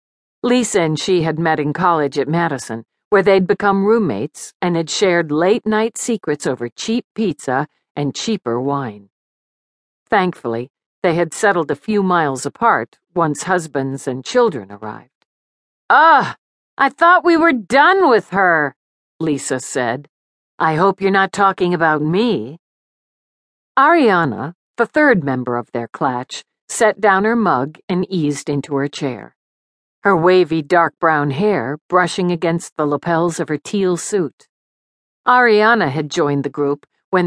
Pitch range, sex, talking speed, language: 145-195 Hz, female, 145 wpm, English